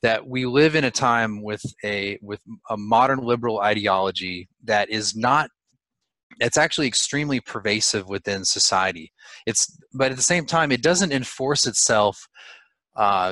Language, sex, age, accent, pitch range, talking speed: English, male, 30-49, American, 100-125 Hz, 150 wpm